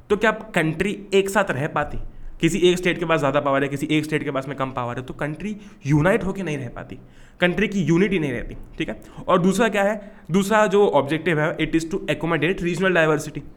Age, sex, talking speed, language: 20-39, male, 235 wpm, Hindi